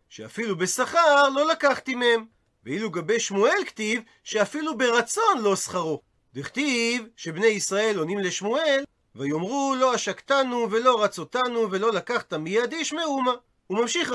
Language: Hebrew